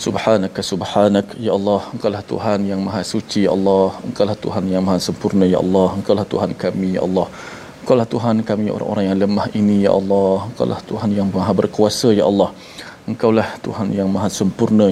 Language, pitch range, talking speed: Malayalam, 95-105 Hz, 195 wpm